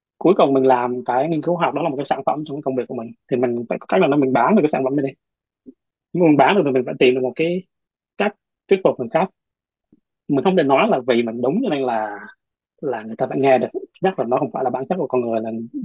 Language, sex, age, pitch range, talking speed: Vietnamese, male, 20-39, 125-155 Hz, 295 wpm